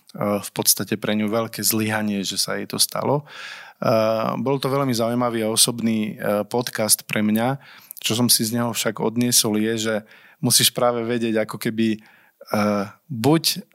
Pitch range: 105-120 Hz